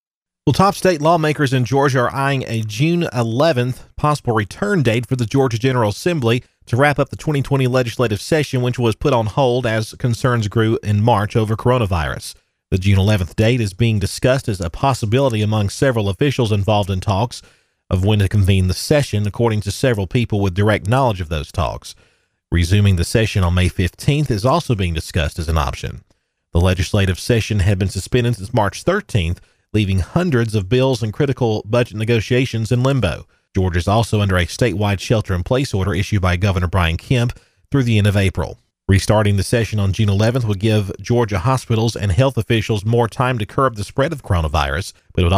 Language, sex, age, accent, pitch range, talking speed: English, male, 40-59, American, 100-125 Hz, 190 wpm